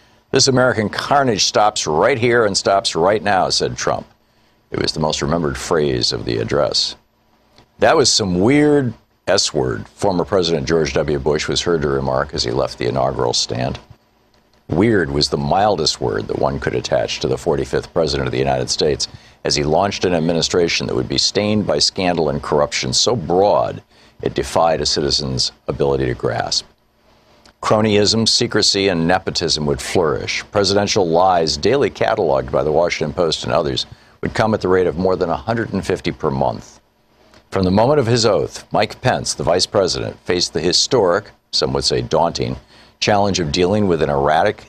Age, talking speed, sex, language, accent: 50-69, 175 wpm, male, English, American